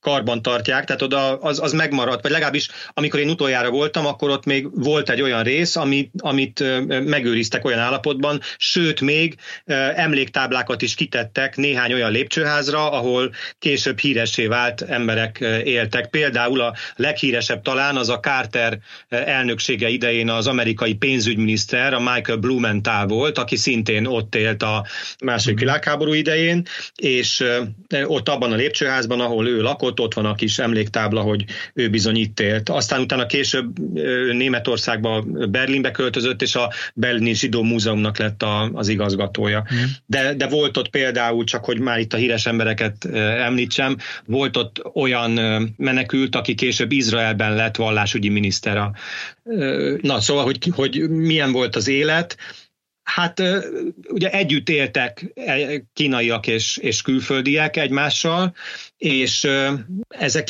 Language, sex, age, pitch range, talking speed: Hungarian, male, 30-49, 115-140 Hz, 135 wpm